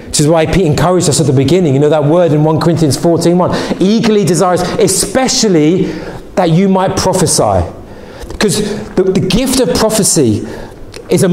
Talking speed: 165 wpm